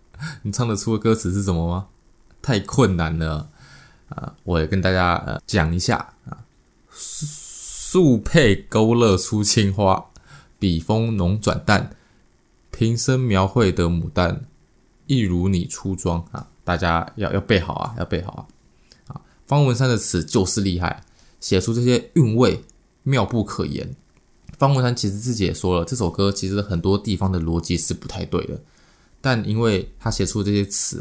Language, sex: Chinese, male